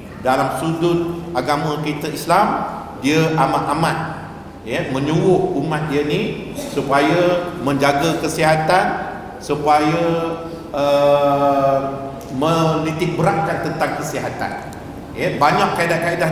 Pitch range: 150-180 Hz